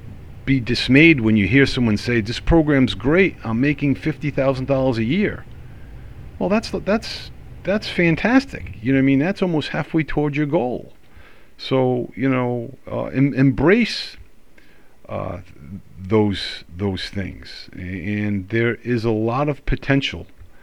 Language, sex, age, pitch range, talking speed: English, male, 50-69, 95-125 Hz, 140 wpm